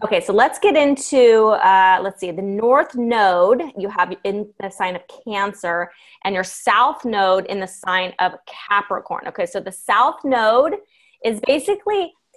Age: 20-39